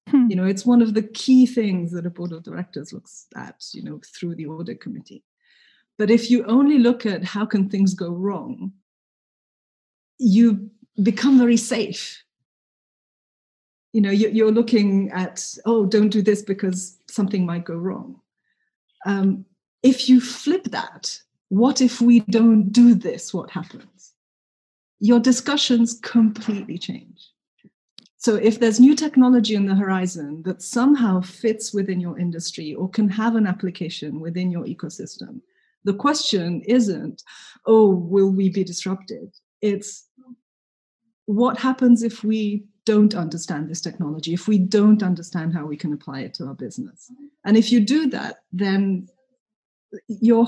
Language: English